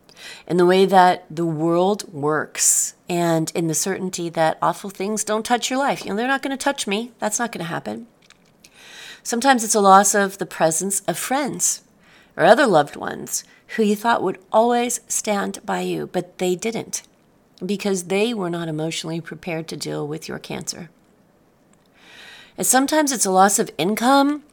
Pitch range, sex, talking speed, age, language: 160-215 Hz, female, 180 wpm, 40-59, English